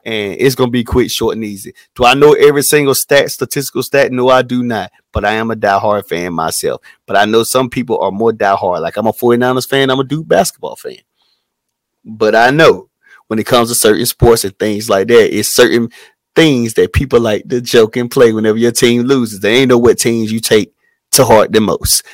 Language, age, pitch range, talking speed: English, 30-49, 115-135 Hz, 230 wpm